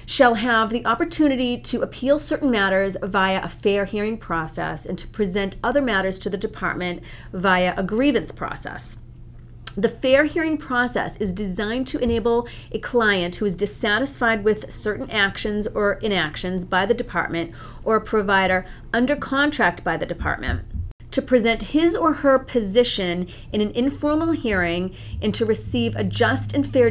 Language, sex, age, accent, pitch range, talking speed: English, female, 40-59, American, 175-240 Hz, 160 wpm